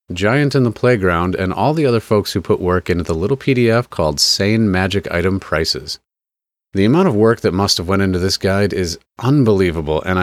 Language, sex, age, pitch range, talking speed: English, male, 30-49, 85-115 Hz, 205 wpm